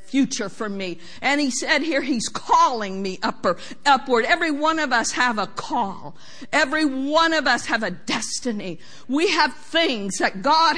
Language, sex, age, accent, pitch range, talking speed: English, female, 50-69, American, 240-330 Hz, 165 wpm